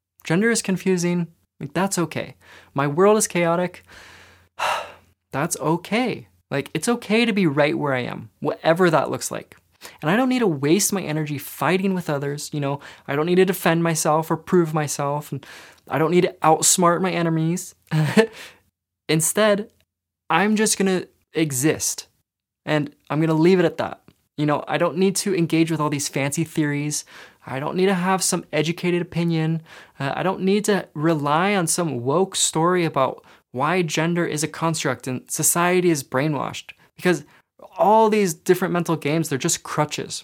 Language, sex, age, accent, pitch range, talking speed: English, male, 20-39, American, 145-180 Hz, 170 wpm